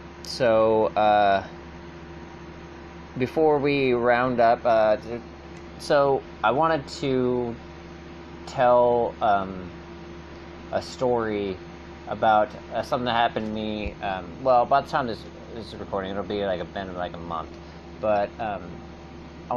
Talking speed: 130 wpm